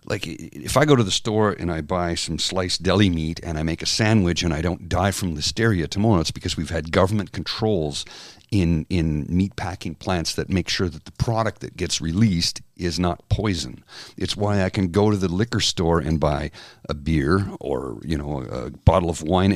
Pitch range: 85-110 Hz